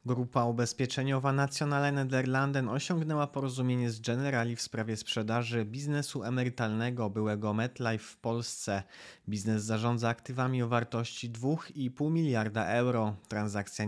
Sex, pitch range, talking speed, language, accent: male, 110-130 Hz, 110 wpm, Polish, native